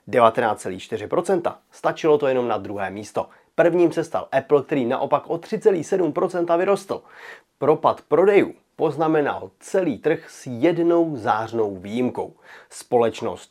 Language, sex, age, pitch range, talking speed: Czech, male, 30-49, 125-175 Hz, 110 wpm